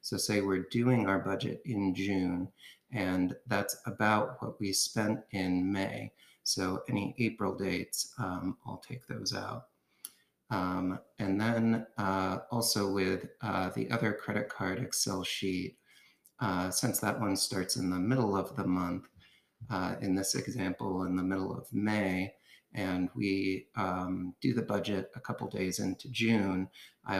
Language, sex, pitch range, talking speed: English, male, 95-115 Hz, 155 wpm